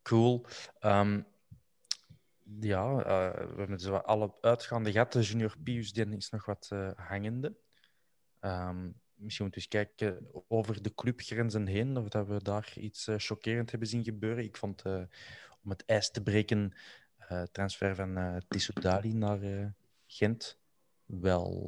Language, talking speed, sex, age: Dutch, 160 wpm, male, 20-39